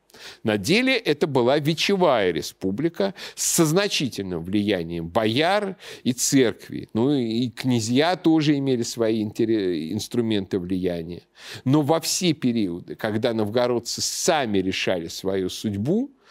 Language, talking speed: Russian, 110 wpm